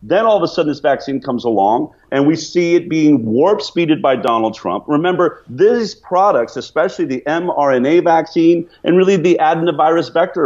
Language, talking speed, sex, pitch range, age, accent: English, 180 wpm, male, 140-175 Hz, 40-59, American